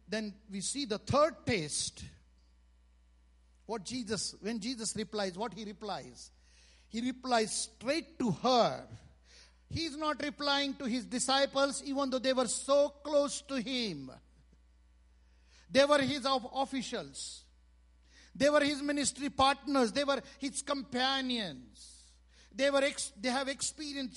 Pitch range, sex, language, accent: 180-280 Hz, male, English, Indian